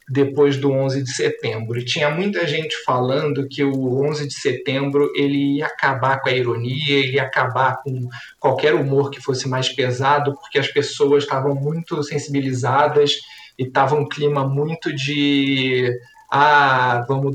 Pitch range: 135-165 Hz